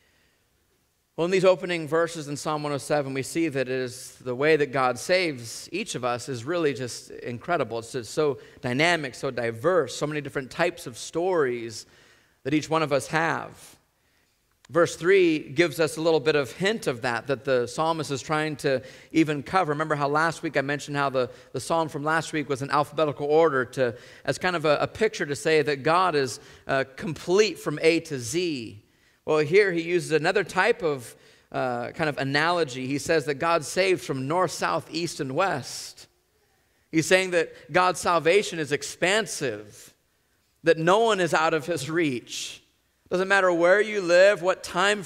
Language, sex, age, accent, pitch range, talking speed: English, male, 40-59, American, 140-175 Hz, 190 wpm